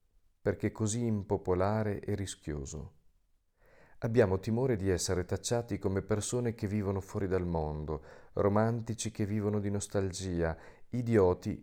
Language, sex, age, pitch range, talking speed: Italian, male, 40-59, 90-110 Hz, 120 wpm